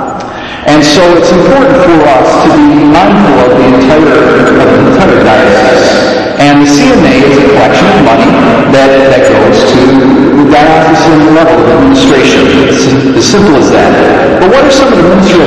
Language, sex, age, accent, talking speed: English, male, 50-69, American, 170 wpm